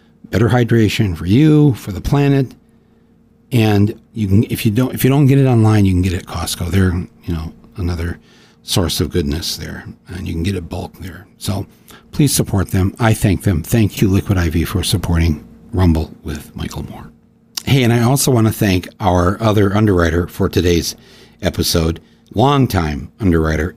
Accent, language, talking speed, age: American, English, 185 wpm, 60-79